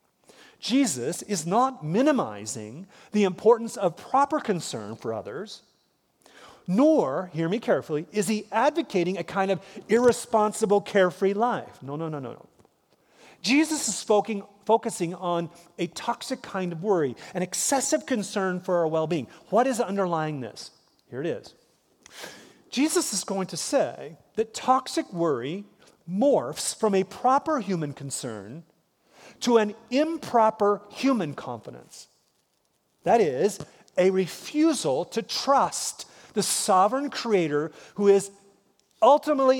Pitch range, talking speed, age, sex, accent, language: 170-250 Hz, 125 wpm, 40-59, male, American, English